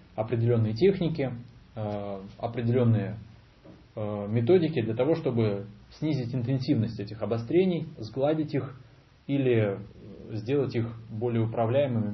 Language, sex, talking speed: Russian, male, 90 wpm